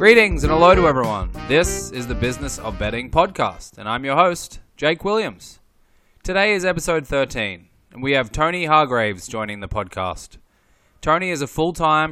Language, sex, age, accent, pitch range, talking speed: English, male, 20-39, Australian, 125-155 Hz, 170 wpm